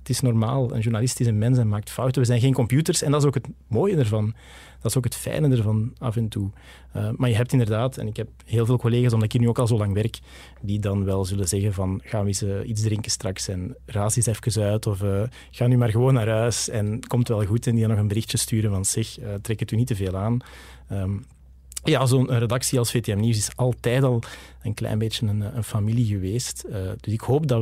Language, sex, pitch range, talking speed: Dutch, male, 105-130 Hz, 265 wpm